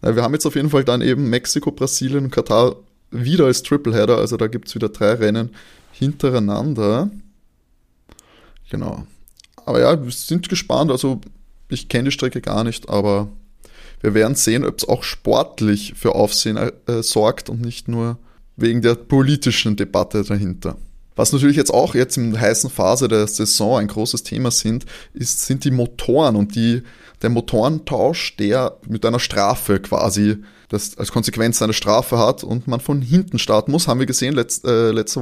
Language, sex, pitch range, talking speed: German, male, 110-135 Hz, 175 wpm